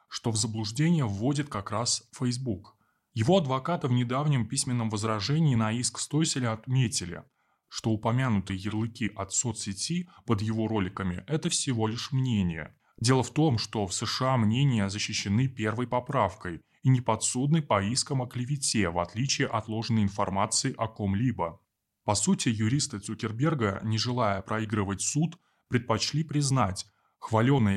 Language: Russian